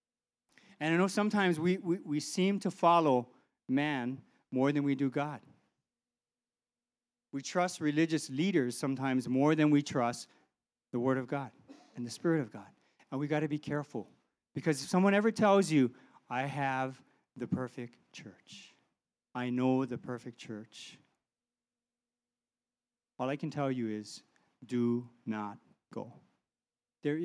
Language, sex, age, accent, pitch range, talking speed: English, male, 40-59, American, 135-200 Hz, 145 wpm